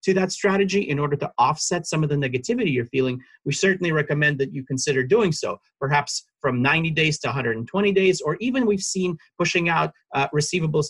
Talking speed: 195 wpm